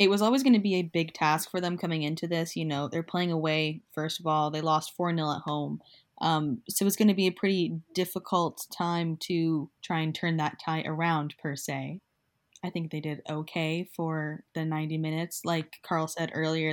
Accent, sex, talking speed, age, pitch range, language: American, female, 215 wpm, 10-29, 155-180 Hz, English